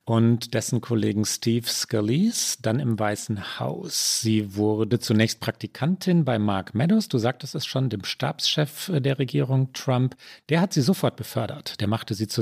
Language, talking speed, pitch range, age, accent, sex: German, 165 wpm, 110-155 Hz, 40-59, German, male